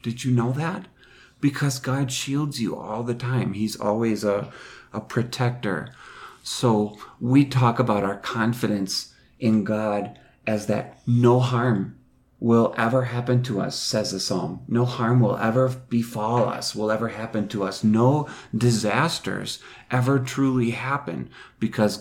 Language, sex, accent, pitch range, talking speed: English, male, American, 105-125 Hz, 145 wpm